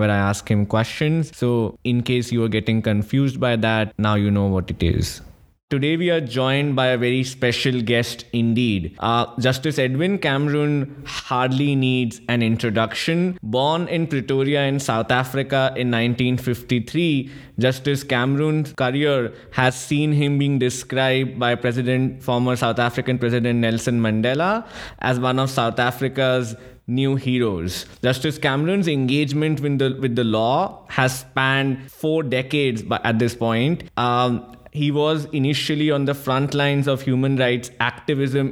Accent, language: Indian, English